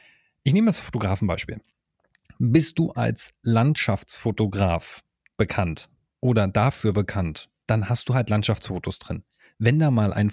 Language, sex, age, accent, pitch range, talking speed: German, male, 30-49, German, 105-135 Hz, 130 wpm